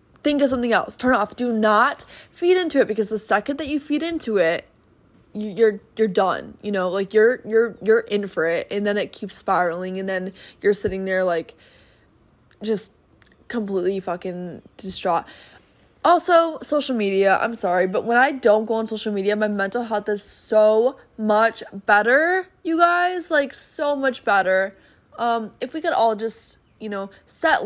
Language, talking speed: English, 175 wpm